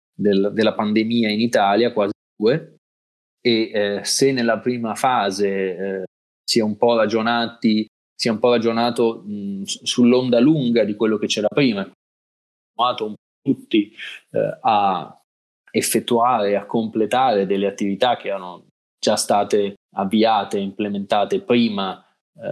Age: 20-39